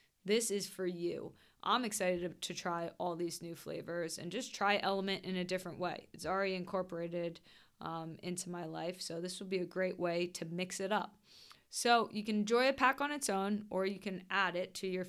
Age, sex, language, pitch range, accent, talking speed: 20-39, female, English, 175-205 Hz, American, 215 wpm